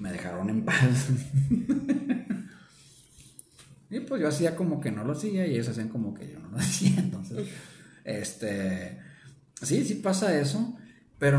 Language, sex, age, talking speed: Spanish, male, 30-49, 155 wpm